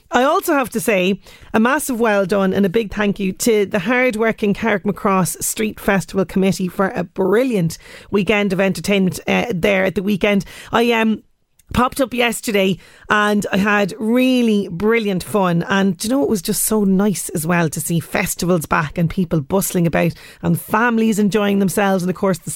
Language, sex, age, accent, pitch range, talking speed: English, female, 30-49, Irish, 190-230 Hz, 185 wpm